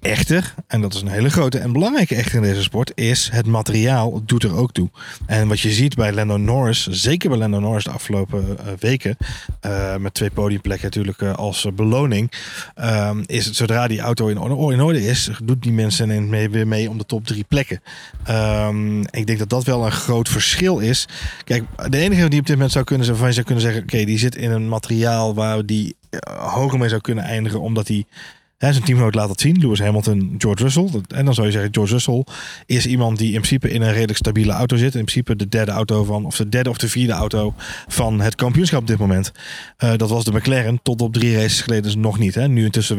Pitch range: 105-125 Hz